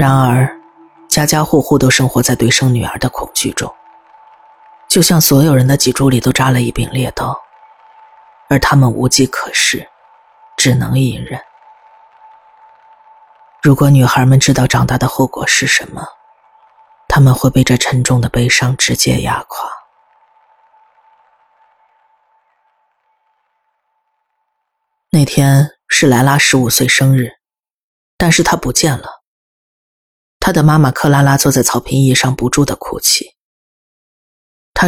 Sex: female